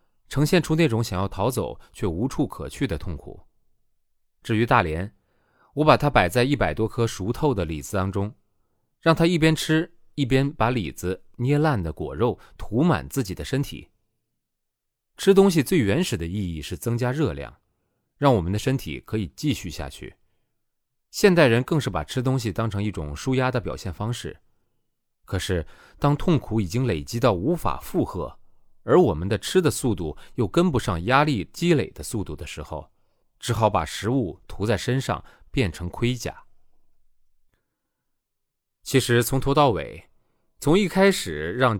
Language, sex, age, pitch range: Chinese, male, 30-49, 95-140 Hz